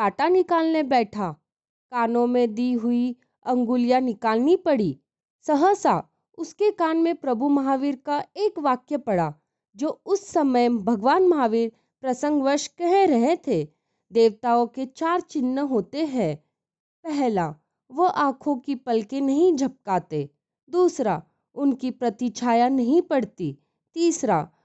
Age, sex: 20-39, female